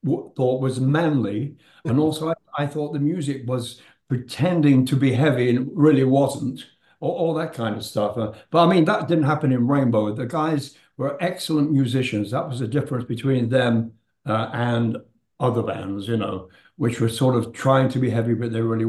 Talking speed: 195 wpm